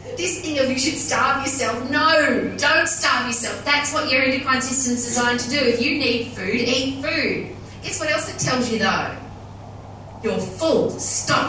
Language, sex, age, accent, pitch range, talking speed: English, female, 30-49, Australian, 200-285 Hz, 190 wpm